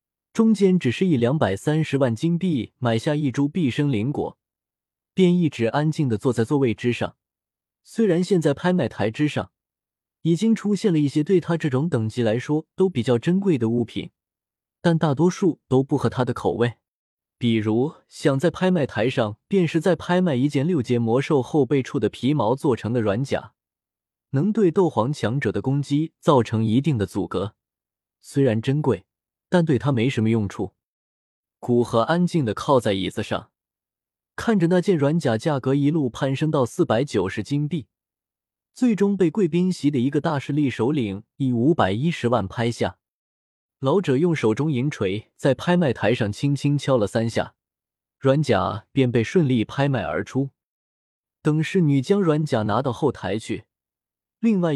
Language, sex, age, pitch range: Chinese, male, 20-39, 115-165 Hz